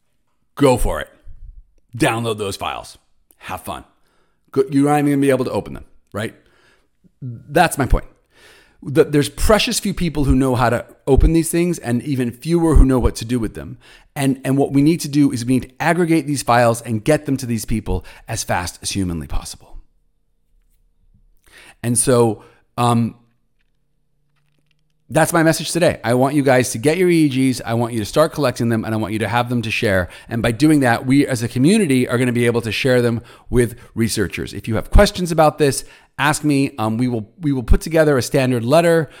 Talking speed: 205 wpm